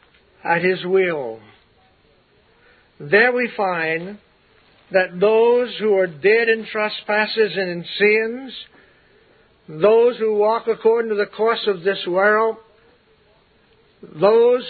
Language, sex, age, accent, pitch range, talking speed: English, male, 50-69, American, 190-220 Hz, 110 wpm